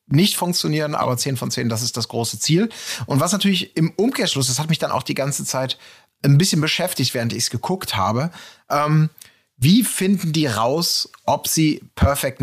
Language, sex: German, male